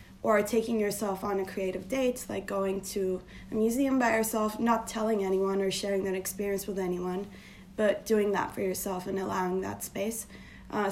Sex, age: female, 20-39